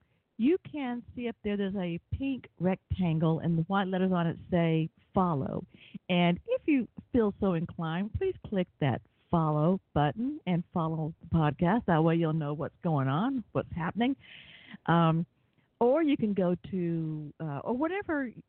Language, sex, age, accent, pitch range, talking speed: English, female, 50-69, American, 160-215 Hz, 160 wpm